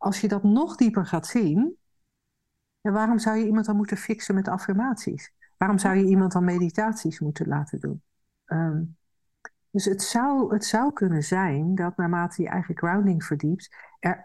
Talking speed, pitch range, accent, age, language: 175 wpm, 155-190 Hz, Dutch, 50-69, Dutch